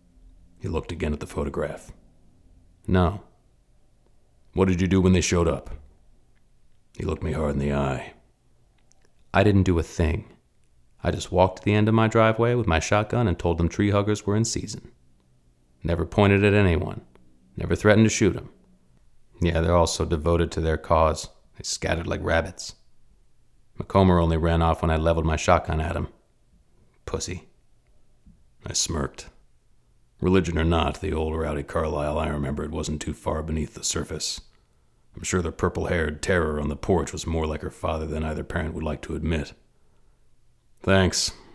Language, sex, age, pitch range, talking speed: English, male, 40-59, 75-90 Hz, 170 wpm